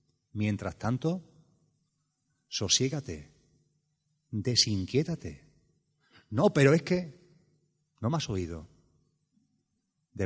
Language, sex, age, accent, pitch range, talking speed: Spanish, male, 30-49, Spanish, 120-160 Hz, 75 wpm